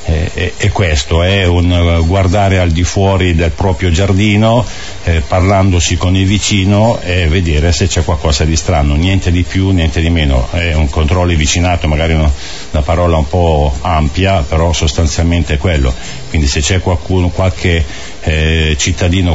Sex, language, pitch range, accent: male, Italian, 80-90 Hz, native